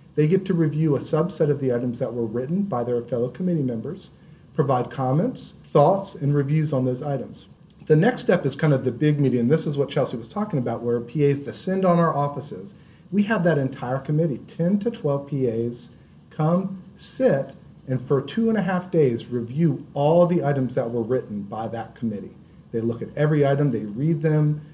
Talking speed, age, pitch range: 205 wpm, 40-59, 125-175 Hz